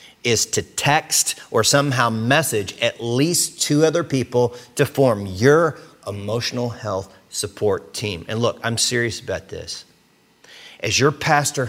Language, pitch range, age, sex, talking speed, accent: English, 120-170 Hz, 40-59, male, 140 wpm, American